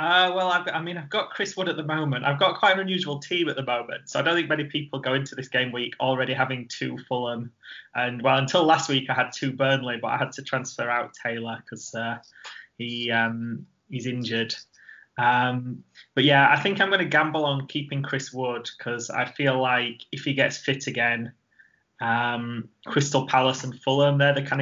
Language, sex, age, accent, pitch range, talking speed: English, male, 10-29, British, 120-145 Hz, 205 wpm